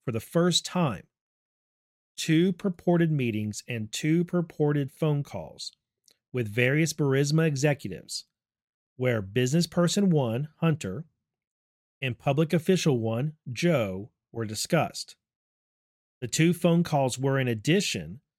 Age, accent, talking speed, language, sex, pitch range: 40-59, American, 110 wpm, English, male, 120-160 Hz